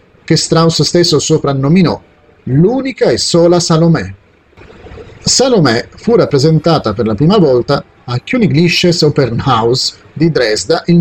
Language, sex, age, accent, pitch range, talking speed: Italian, male, 40-59, native, 125-175 Hz, 115 wpm